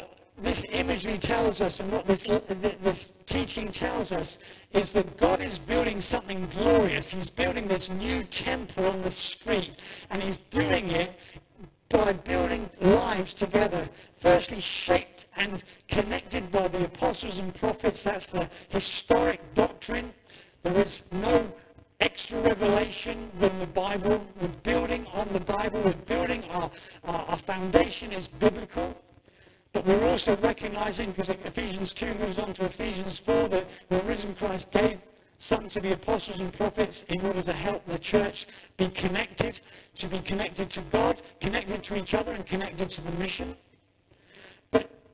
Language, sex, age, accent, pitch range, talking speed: English, male, 60-79, British, 185-210 Hz, 150 wpm